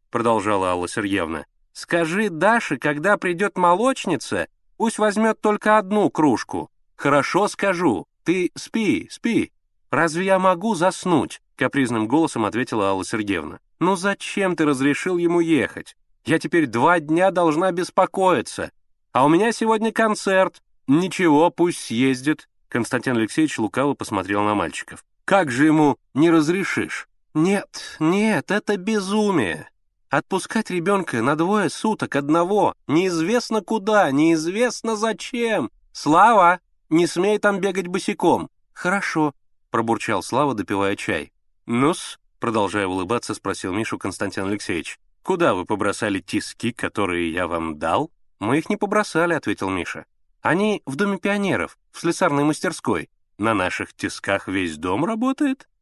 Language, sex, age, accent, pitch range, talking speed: Russian, male, 30-49, native, 130-205 Hz, 130 wpm